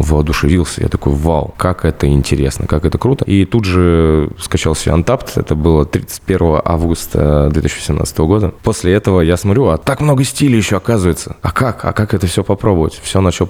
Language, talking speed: Russian, 180 wpm